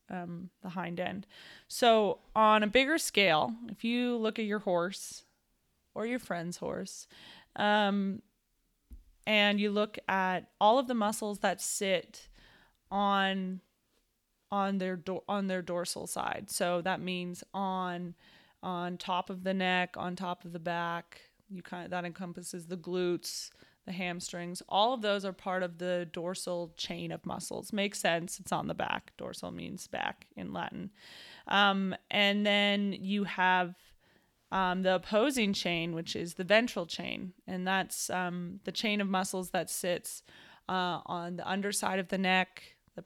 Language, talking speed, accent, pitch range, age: English, 160 wpm, American, 180-205 Hz, 20-39